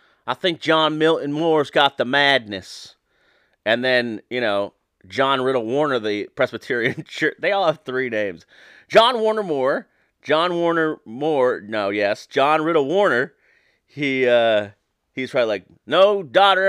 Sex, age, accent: male, 30-49, American